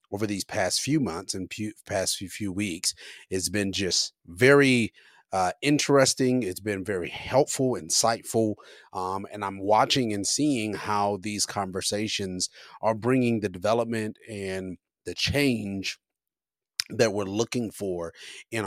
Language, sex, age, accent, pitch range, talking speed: English, male, 30-49, American, 100-125 Hz, 130 wpm